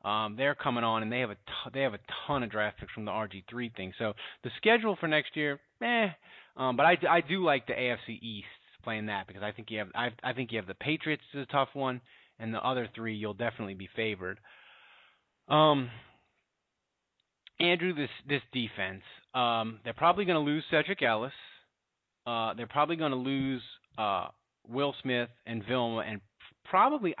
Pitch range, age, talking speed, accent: 115-150 Hz, 30-49, 195 wpm, American